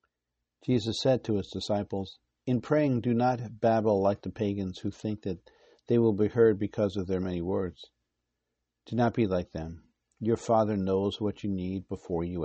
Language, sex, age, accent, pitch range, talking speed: English, male, 50-69, American, 85-110 Hz, 185 wpm